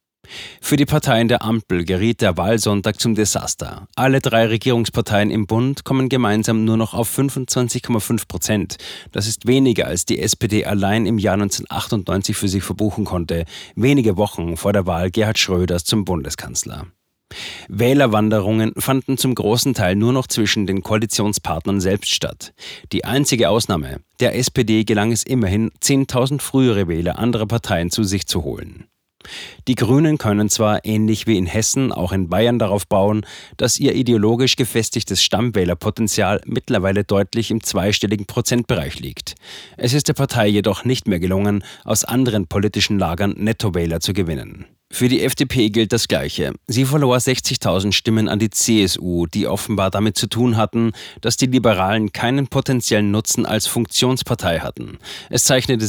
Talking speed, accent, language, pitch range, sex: 155 wpm, German, German, 100-120 Hz, male